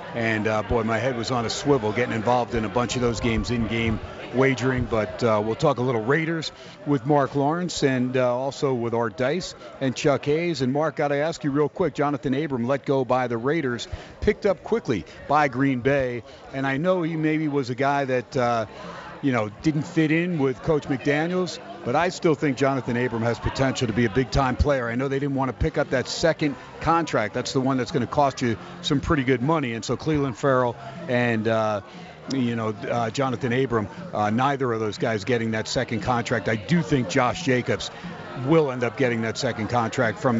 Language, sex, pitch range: English, male, 120-150 Hz